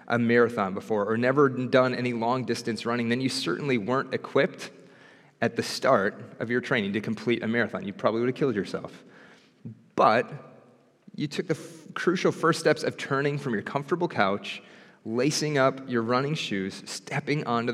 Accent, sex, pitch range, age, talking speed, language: American, male, 120-145 Hz, 30-49, 175 wpm, English